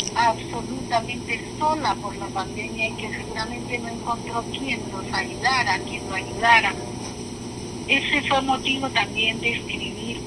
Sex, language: female, Spanish